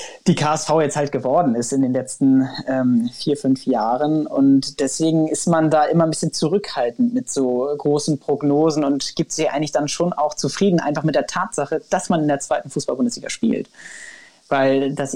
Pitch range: 135-160 Hz